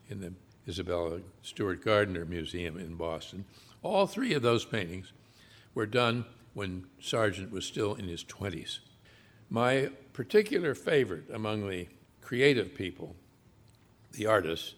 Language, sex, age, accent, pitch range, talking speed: English, male, 60-79, American, 95-120 Hz, 125 wpm